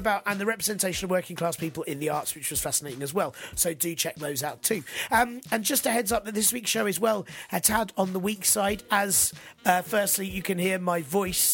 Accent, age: British, 30-49